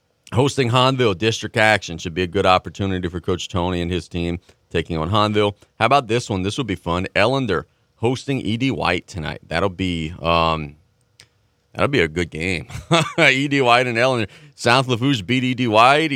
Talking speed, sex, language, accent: 180 wpm, male, English, American